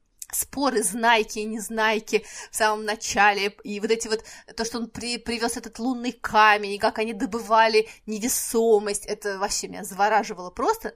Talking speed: 160 wpm